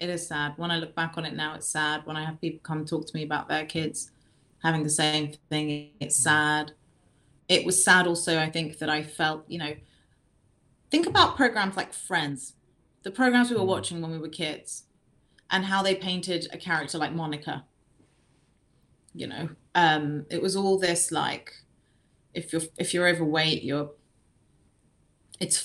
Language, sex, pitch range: English, female, 155-185 Hz